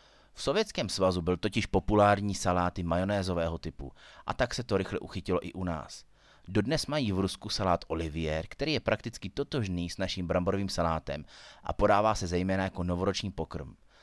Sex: male